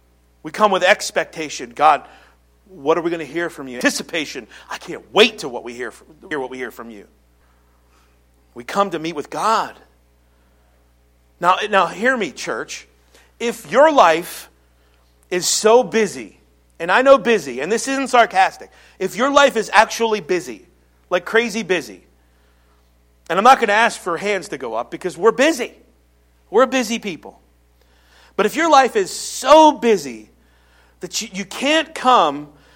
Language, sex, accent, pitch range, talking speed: English, male, American, 140-230 Hz, 160 wpm